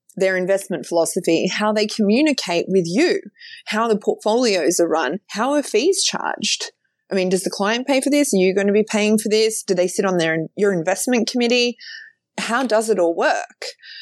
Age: 20-39